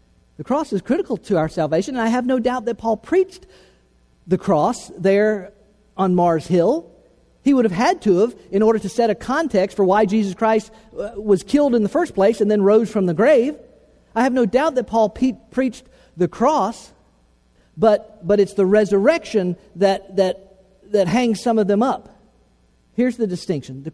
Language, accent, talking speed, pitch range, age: English, American, 190 wpm, 170-245 Hz, 50-69